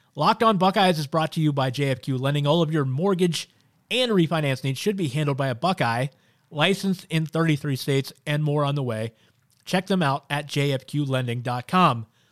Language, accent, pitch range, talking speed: English, American, 130-170 Hz, 180 wpm